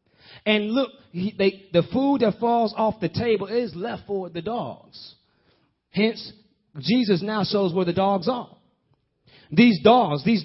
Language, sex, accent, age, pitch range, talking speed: English, male, American, 30-49, 165-225 Hz, 145 wpm